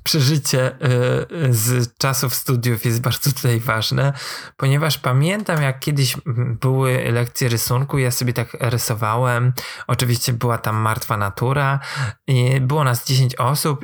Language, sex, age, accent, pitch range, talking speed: Polish, male, 20-39, native, 125-155 Hz, 125 wpm